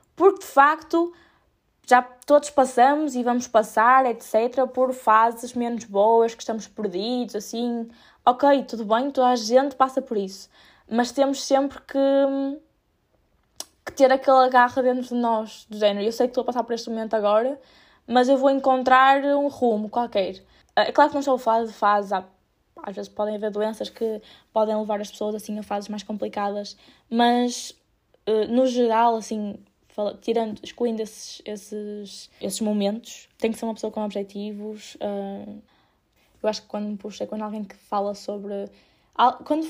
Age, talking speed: 10-29, 165 wpm